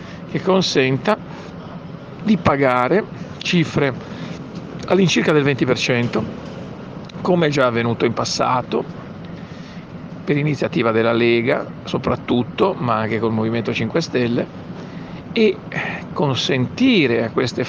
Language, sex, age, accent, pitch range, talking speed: Italian, male, 50-69, native, 120-160 Hz, 100 wpm